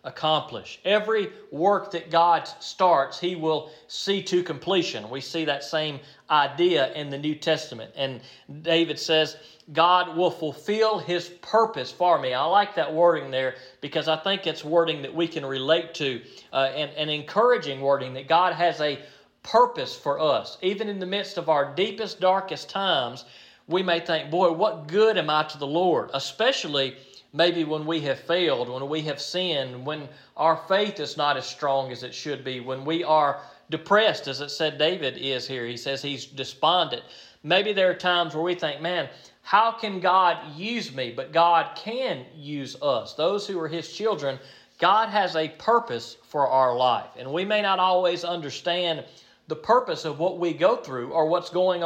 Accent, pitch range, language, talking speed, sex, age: American, 140-180 Hz, English, 185 wpm, male, 40-59